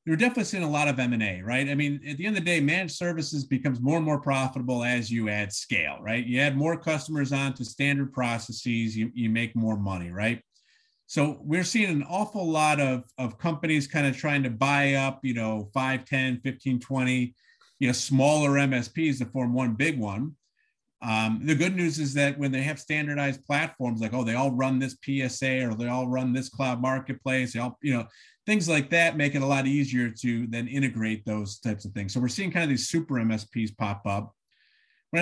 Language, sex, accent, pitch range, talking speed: English, male, American, 115-150 Hz, 215 wpm